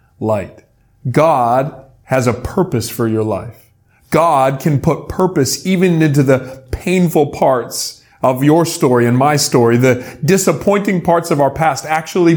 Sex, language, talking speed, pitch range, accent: male, English, 145 wpm, 120-170 Hz, American